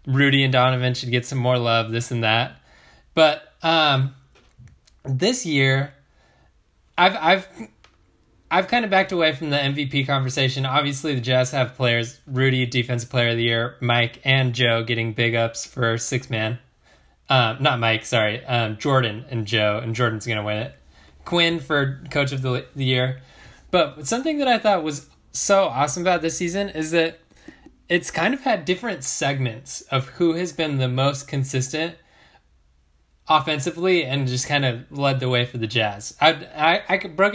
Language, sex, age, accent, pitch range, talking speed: English, male, 10-29, American, 115-150 Hz, 170 wpm